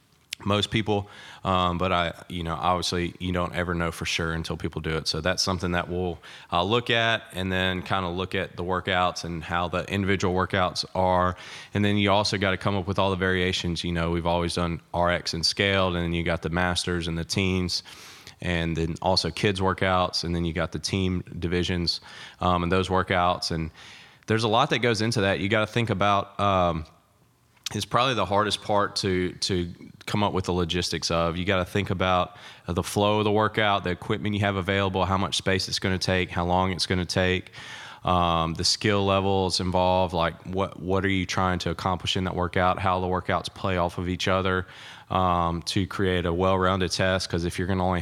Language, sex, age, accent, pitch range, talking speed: English, male, 20-39, American, 85-95 Hz, 215 wpm